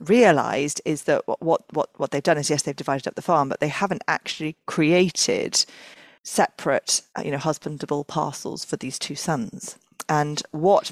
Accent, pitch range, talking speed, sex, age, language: British, 145-170 Hz, 170 wpm, female, 40-59, English